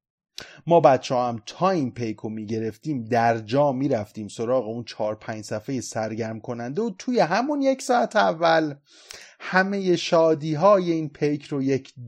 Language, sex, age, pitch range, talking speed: Persian, male, 30-49, 120-185 Hz, 160 wpm